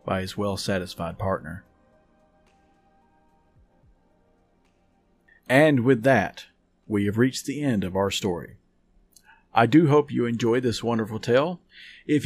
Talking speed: 120 wpm